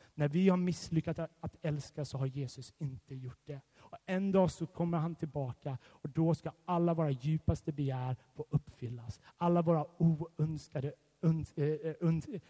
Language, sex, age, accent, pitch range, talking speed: Swedish, male, 30-49, native, 130-170 Hz, 160 wpm